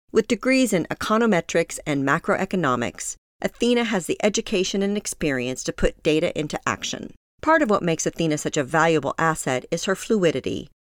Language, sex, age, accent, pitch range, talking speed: English, female, 40-59, American, 155-205 Hz, 160 wpm